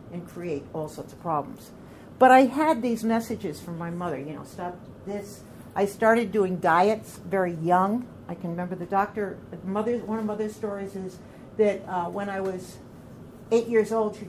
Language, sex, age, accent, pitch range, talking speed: English, female, 60-79, American, 175-220 Hz, 185 wpm